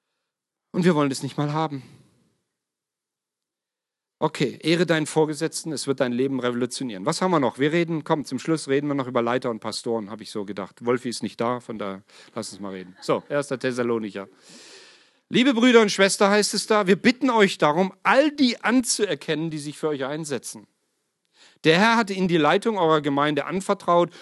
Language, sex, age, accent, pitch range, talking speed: German, male, 40-59, German, 135-195 Hz, 190 wpm